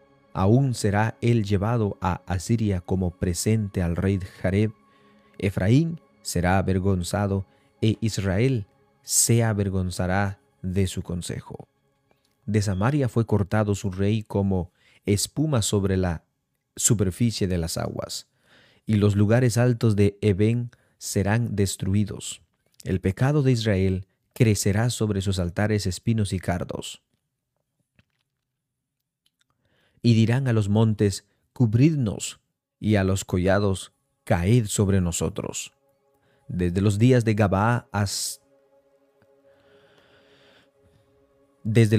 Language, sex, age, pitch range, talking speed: Spanish, male, 30-49, 95-120 Hz, 95 wpm